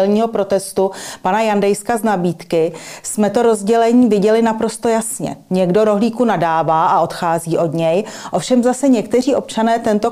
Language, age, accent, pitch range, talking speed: Czech, 40-59, native, 180-225 Hz, 135 wpm